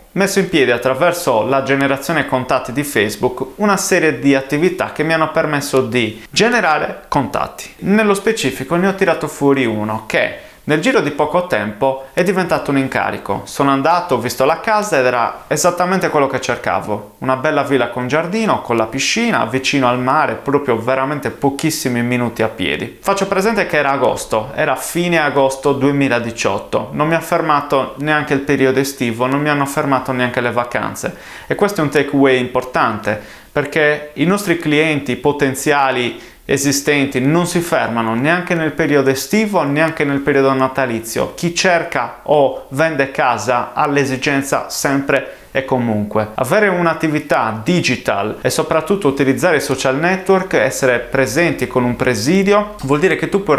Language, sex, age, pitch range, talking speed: Italian, male, 30-49, 130-160 Hz, 160 wpm